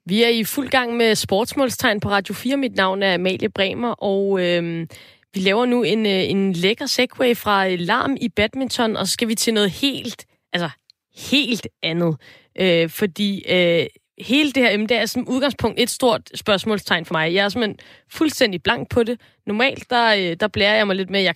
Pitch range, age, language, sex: 195-245 Hz, 20-39, Danish, female